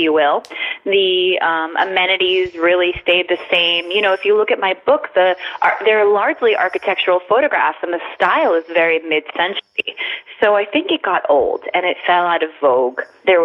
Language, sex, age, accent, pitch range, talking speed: English, female, 20-39, American, 165-215 Hz, 180 wpm